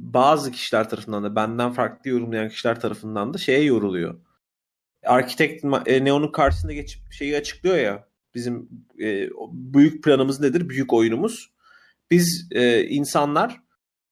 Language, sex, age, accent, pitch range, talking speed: English, male, 30-49, Turkish, 125-175 Hz, 115 wpm